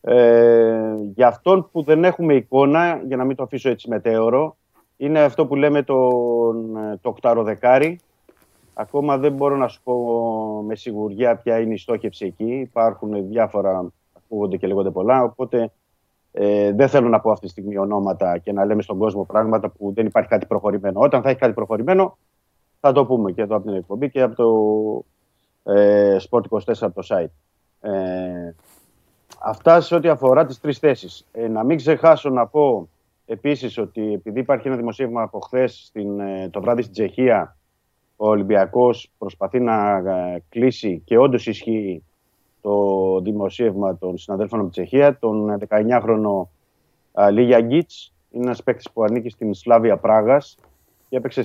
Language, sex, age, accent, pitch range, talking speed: Greek, male, 30-49, native, 100-130 Hz, 160 wpm